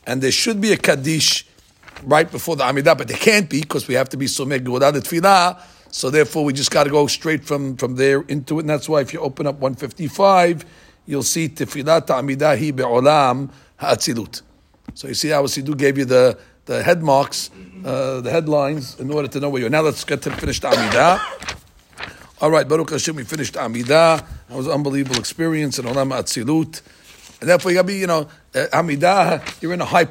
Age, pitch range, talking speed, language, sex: 50-69, 135-160 Hz, 210 wpm, English, male